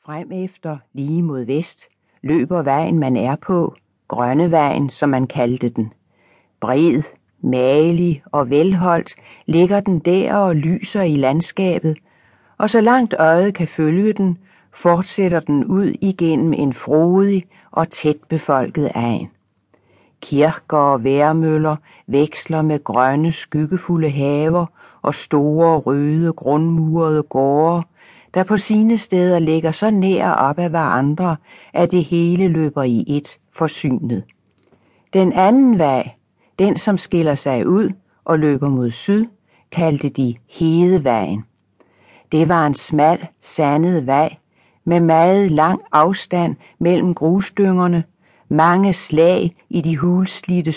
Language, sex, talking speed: Danish, female, 125 wpm